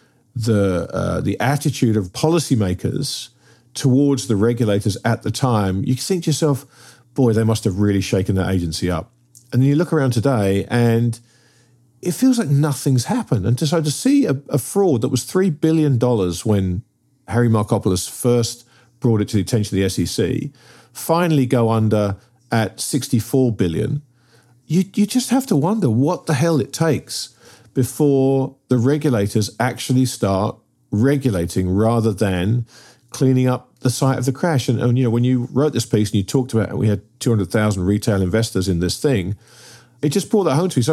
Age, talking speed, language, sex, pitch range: 40-59, 180 wpm, English, male, 110-140 Hz